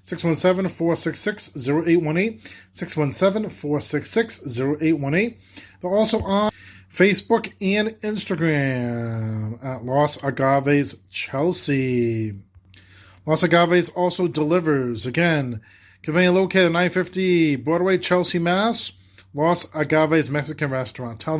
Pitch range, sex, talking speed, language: 140-170 Hz, male, 75 wpm, English